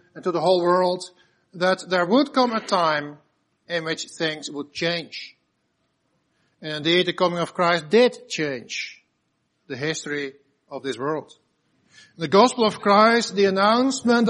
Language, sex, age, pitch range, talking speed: English, male, 50-69, 170-235 Hz, 145 wpm